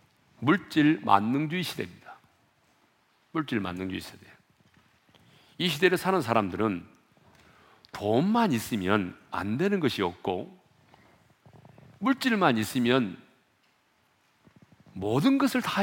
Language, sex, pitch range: Korean, male, 105-160 Hz